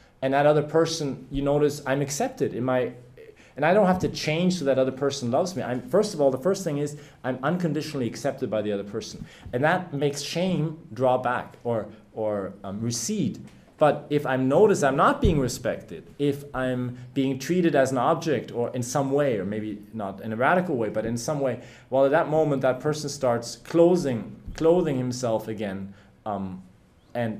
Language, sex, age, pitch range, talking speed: English, male, 30-49, 120-155 Hz, 200 wpm